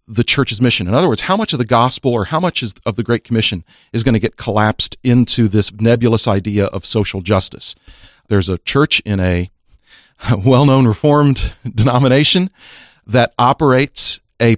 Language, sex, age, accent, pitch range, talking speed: English, male, 40-59, American, 110-140 Hz, 175 wpm